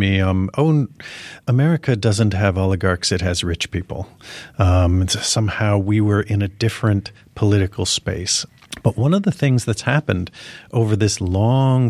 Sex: male